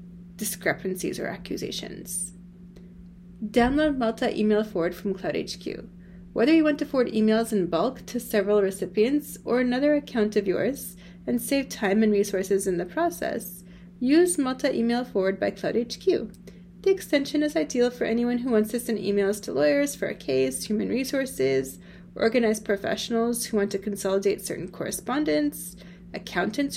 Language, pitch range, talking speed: English, 195-240 Hz, 150 wpm